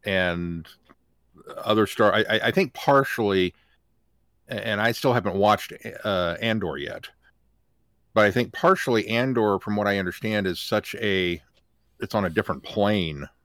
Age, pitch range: 50-69, 85-105 Hz